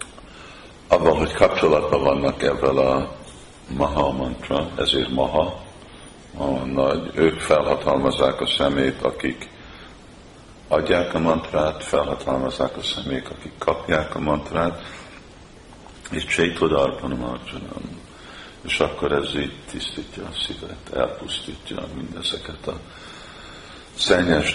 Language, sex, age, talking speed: Hungarian, male, 60-79, 100 wpm